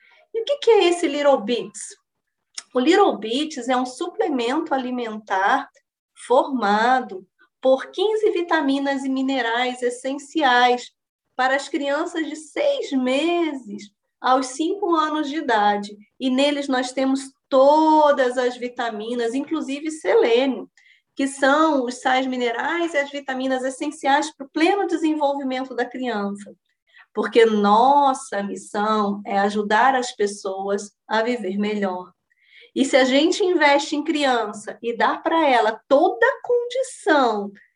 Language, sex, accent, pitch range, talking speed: Portuguese, female, Brazilian, 225-305 Hz, 125 wpm